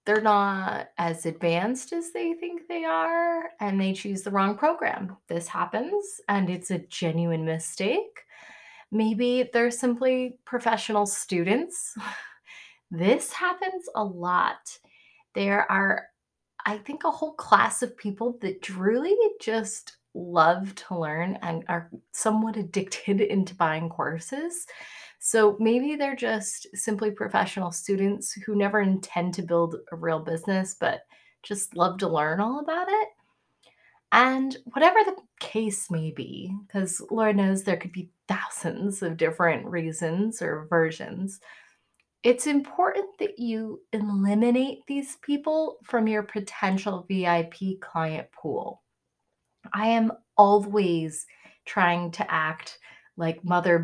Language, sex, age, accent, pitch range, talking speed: English, female, 20-39, American, 180-245 Hz, 130 wpm